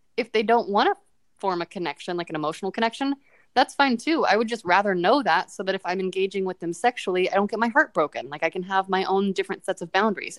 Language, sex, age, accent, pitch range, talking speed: English, female, 20-39, American, 180-220 Hz, 260 wpm